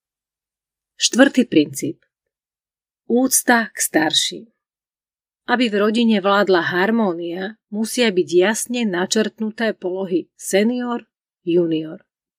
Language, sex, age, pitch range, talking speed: Slovak, female, 40-59, 180-240 Hz, 80 wpm